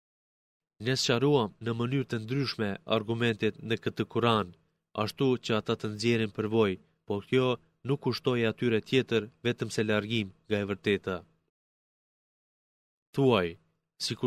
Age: 30-49